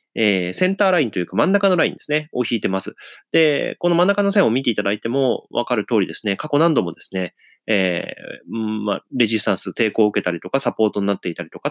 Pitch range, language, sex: 105-175 Hz, Japanese, male